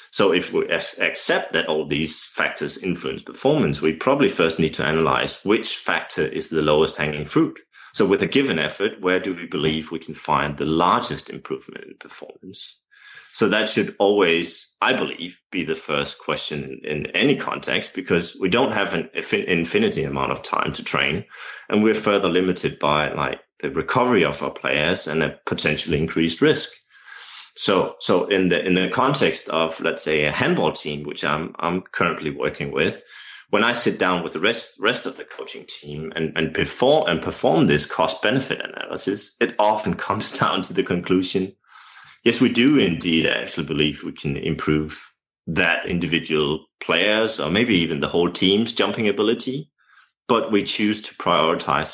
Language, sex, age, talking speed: English, male, 30-49, 180 wpm